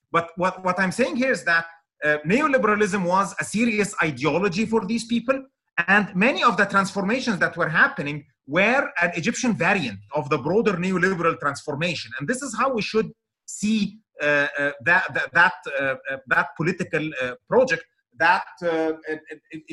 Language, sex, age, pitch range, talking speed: English, male, 30-49, 150-210 Hz, 155 wpm